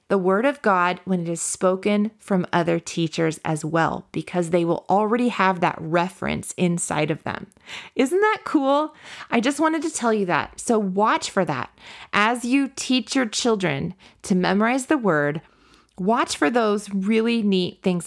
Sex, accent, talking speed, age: female, American, 175 wpm, 30-49